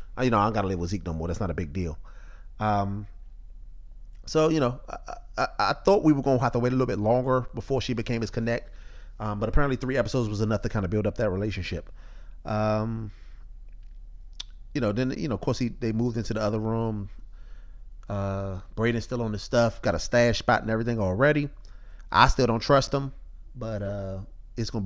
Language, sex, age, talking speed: English, male, 30-49, 215 wpm